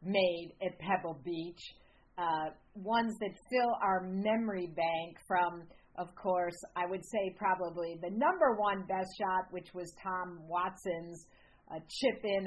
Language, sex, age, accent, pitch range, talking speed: English, female, 50-69, American, 175-220 Hz, 145 wpm